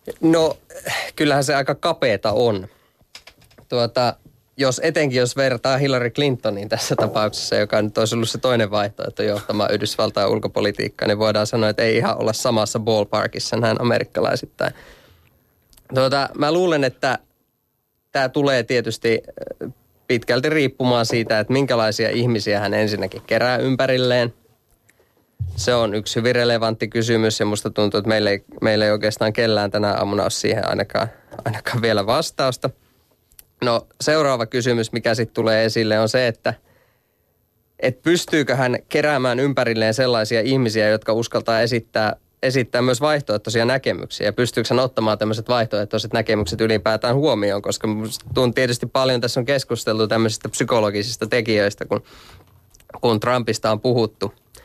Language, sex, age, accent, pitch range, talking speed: Finnish, male, 20-39, native, 110-130 Hz, 135 wpm